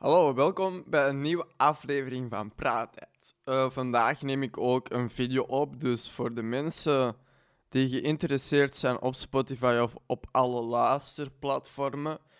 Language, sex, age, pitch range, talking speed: Dutch, male, 20-39, 125-145 Hz, 140 wpm